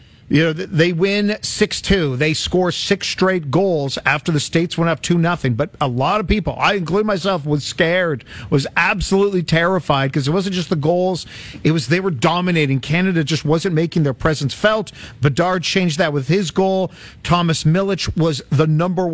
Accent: American